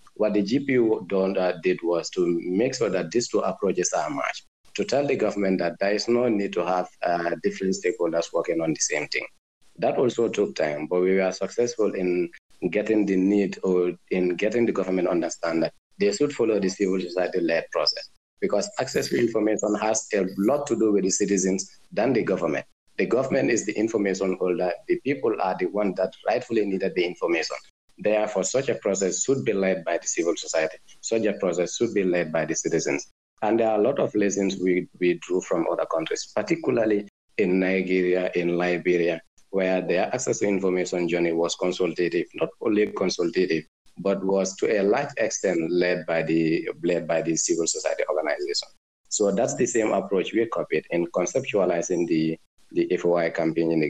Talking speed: 190 wpm